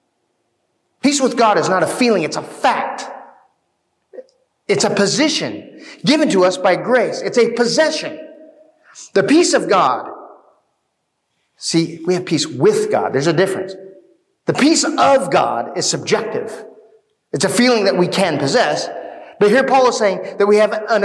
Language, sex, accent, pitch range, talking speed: English, male, American, 195-285 Hz, 160 wpm